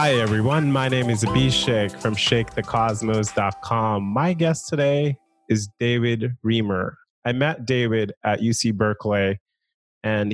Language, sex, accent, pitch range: English, male, American, 110-130 Hz